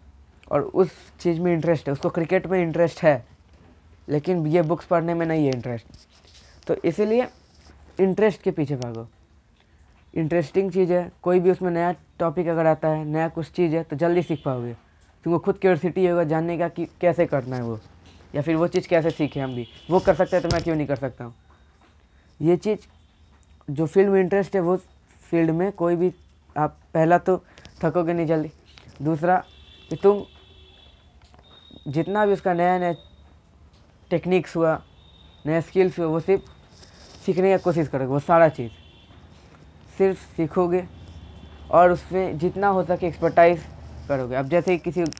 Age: 20-39